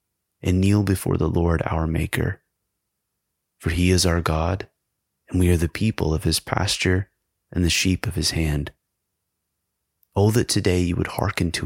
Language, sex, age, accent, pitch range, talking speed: English, male, 30-49, American, 80-95 Hz, 170 wpm